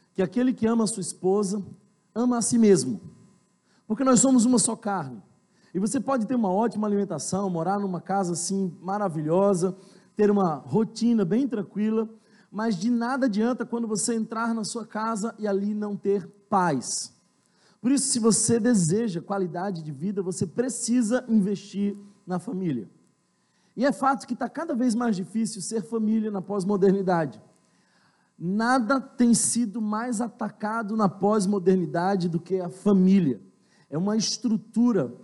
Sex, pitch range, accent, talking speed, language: male, 185-225 Hz, Brazilian, 150 wpm, Portuguese